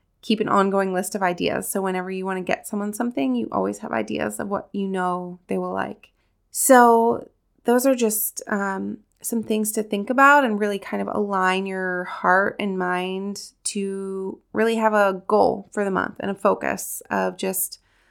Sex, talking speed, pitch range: female, 190 wpm, 185-235 Hz